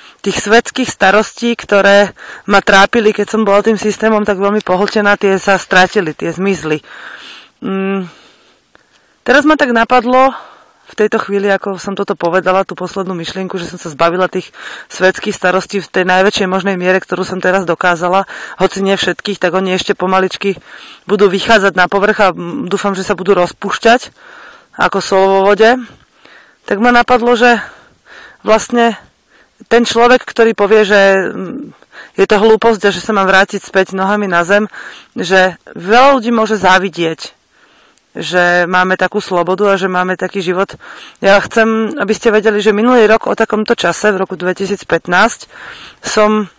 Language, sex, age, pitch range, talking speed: Slovak, female, 20-39, 190-220 Hz, 155 wpm